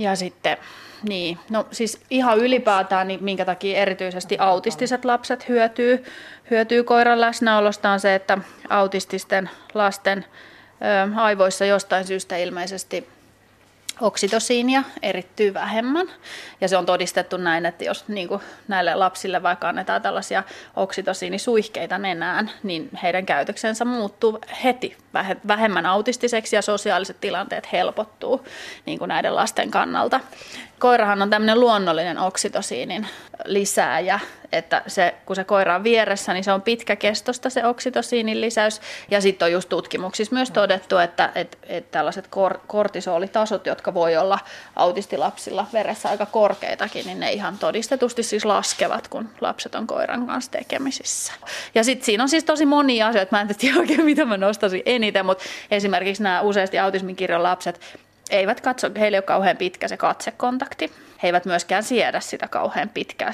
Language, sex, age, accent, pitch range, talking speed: Finnish, female, 30-49, native, 190-235 Hz, 140 wpm